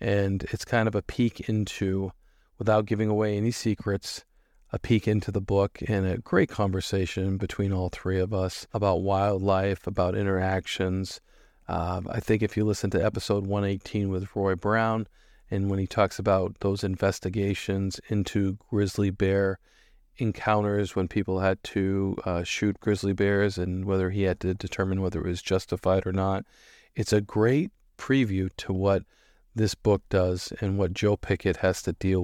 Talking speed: 165 wpm